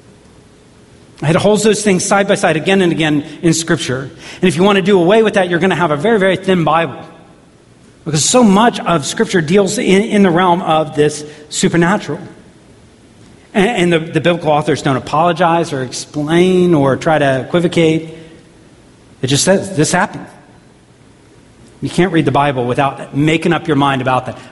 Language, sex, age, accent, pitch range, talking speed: English, male, 40-59, American, 135-175 Hz, 185 wpm